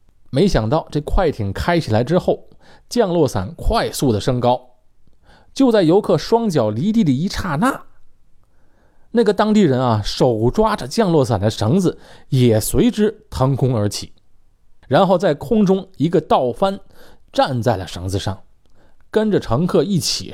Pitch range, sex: 105-155 Hz, male